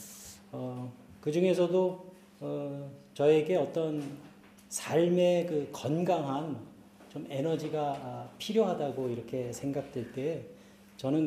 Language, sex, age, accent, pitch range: Korean, male, 40-59, native, 130-180 Hz